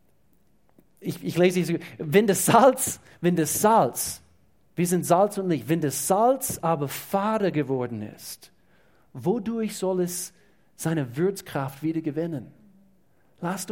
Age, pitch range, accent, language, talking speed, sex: 40-59, 135-175 Hz, German, German, 125 wpm, male